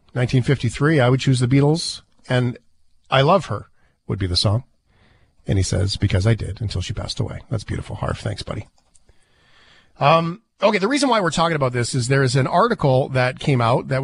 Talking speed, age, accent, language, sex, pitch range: 200 wpm, 40-59, American, English, male, 115-165 Hz